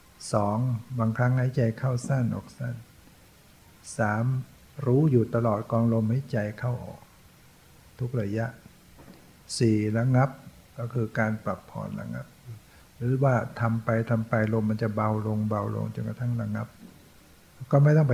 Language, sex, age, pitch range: English, male, 60-79, 110-125 Hz